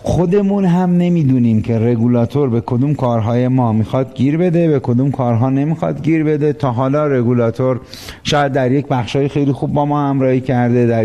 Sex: male